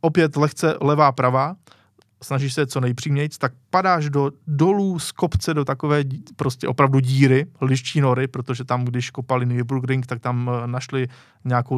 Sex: male